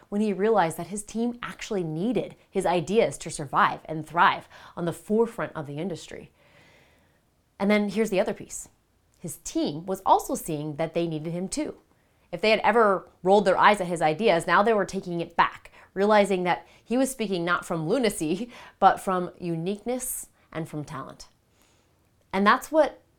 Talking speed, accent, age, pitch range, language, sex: 180 wpm, American, 30-49, 165-230 Hz, English, female